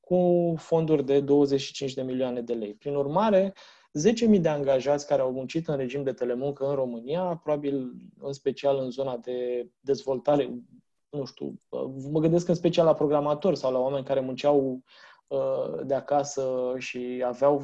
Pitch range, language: 130-155 Hz, Romanian